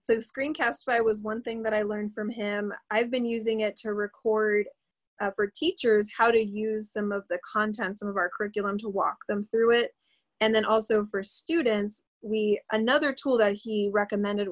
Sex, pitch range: female, 205-230 Hz